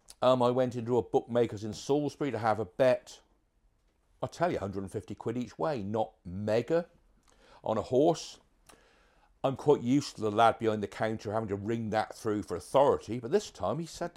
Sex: male